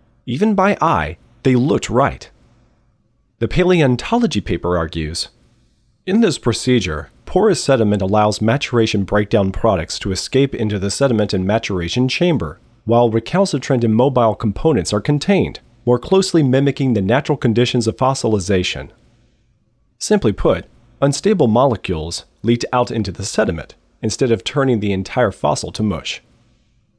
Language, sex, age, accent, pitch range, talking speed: English, male, 40-59, American, 100-135 Hz, 130 wpm